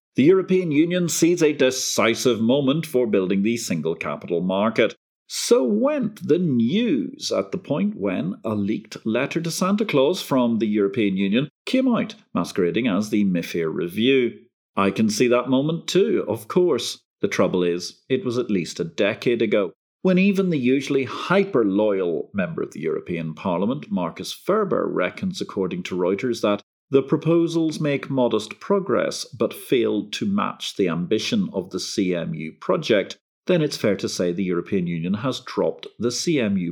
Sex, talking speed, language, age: male, 165 wpm, English, 40-59